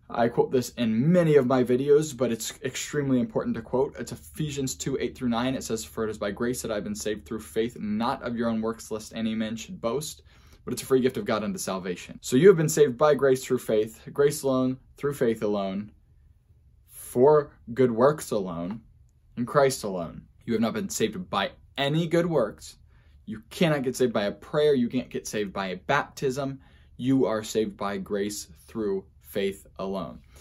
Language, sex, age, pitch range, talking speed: English, male, 10-29, 105-140 Hz, 205 wpm